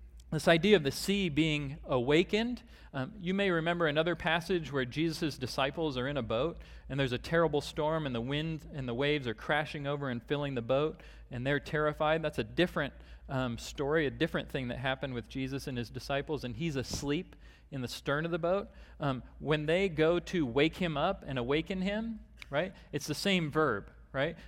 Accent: American